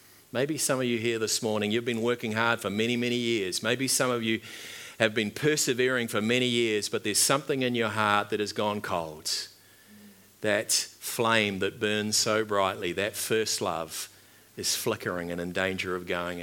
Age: 50-69